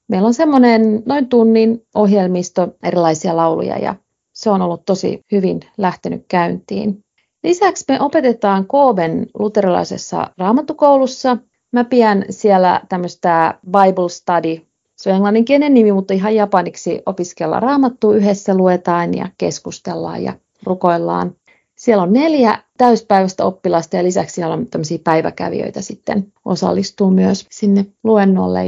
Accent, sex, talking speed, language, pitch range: native, female, 120 wpm, Finnish, 180-225 Hz